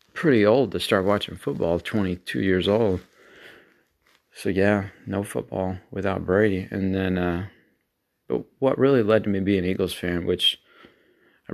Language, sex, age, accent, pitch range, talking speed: English, male, 30-49, American, 90-105 Hz, 155 wpm